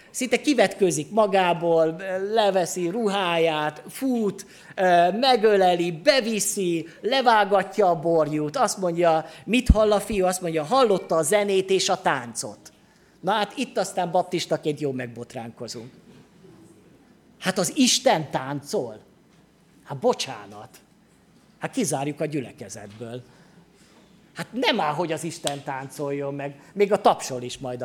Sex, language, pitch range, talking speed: male, Hungarian, 145-195 Hz, 120 wpm